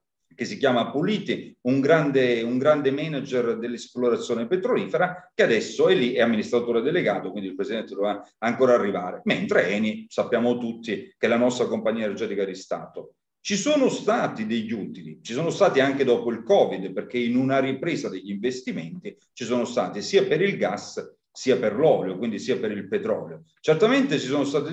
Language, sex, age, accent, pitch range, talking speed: Italian, male, 40-59, native, 120-165 Hz, 175 wpm